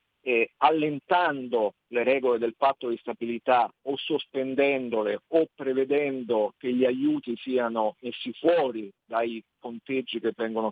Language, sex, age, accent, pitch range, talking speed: Italian, male, 50-69, native, 120-145 Hz, 120 wpm